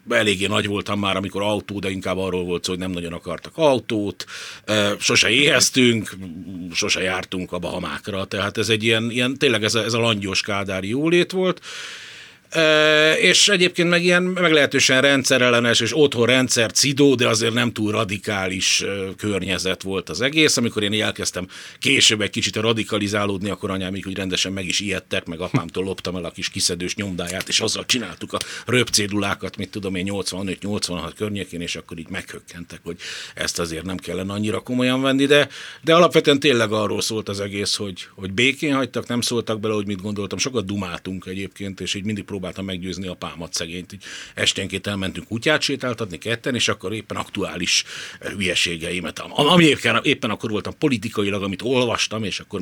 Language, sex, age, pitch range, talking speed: Hungarian, male, 60-79, 95-115 Hz, 175 wpm